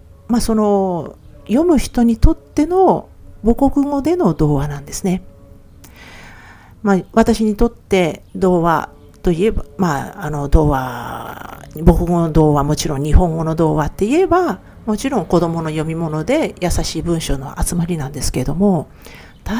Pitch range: 150-230 Hz